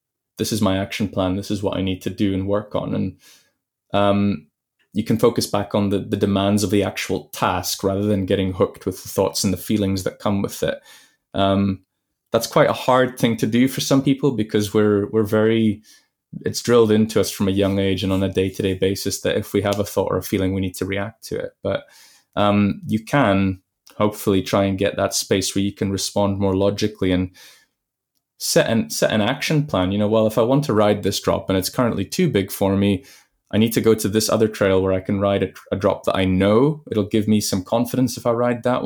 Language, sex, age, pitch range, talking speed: English, male, 20-39, 95-110 Hz, 235 wpm